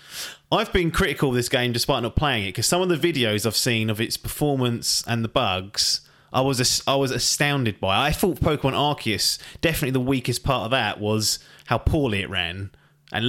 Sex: male